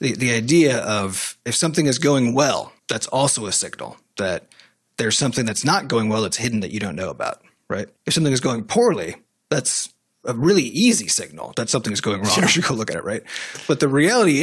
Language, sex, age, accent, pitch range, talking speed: English, male, 30-49, American, 110-145 Hz, 220 wpm